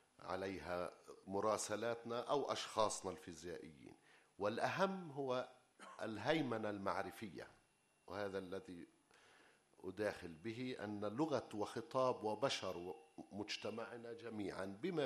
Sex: male